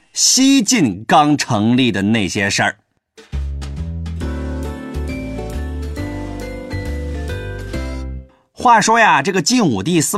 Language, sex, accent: Chinese, male, native